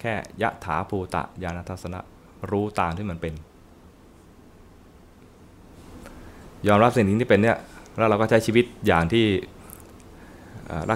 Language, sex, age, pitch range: Thai, male, 20-39, 85-100 Hz